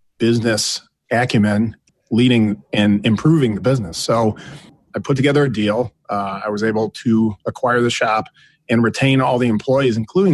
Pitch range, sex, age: 105-135 Hz, male, 40-59